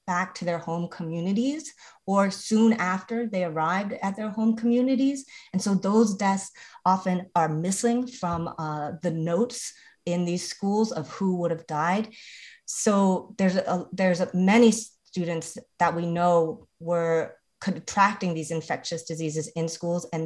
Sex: female